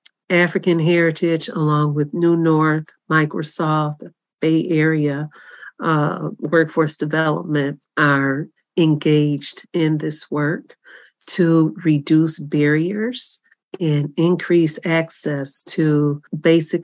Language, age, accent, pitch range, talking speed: English, 40-59, American, 150-175 Hz, 90 wpm